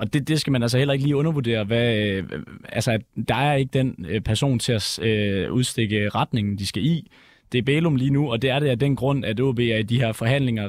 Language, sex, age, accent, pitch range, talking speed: Danish, male, 20-39, native, 110-135 Hz, 240 wpm